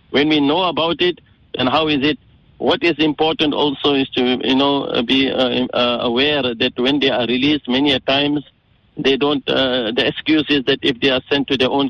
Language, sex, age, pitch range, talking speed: English, male, 60-79, 125-140 Hz, 215 wpm